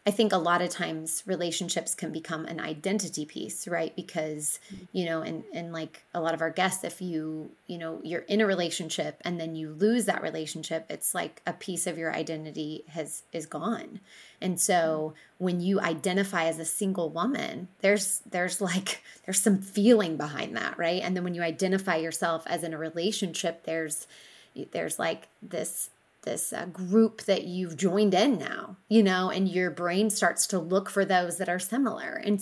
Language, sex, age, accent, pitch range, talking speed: English, female, 20-39, American, 165-195 Hz, 185 wpm